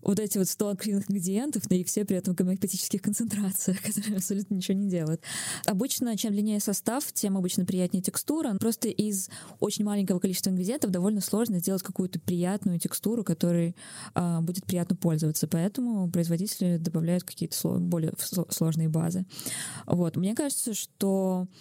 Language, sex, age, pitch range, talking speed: Russian, female, 20-39, 170-200 Hz, 155 wpm